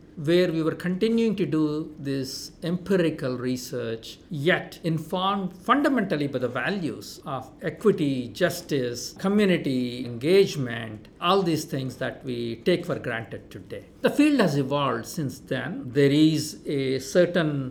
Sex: male